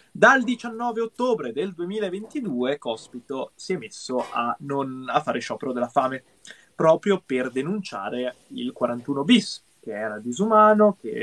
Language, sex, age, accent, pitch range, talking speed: Italian, male, 20-39, native, 120-185 Hz, 140 wpm